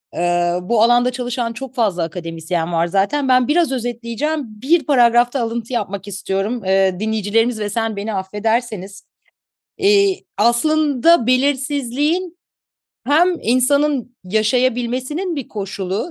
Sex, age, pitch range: female, 40-59, 200-275 Hz